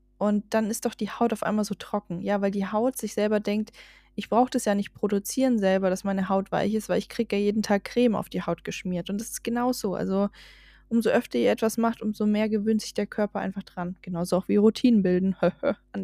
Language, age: German, 10-29